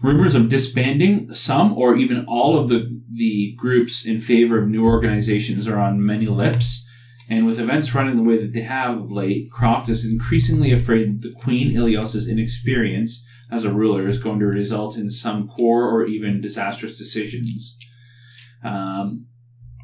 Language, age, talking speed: English, 30-49, 165 wpm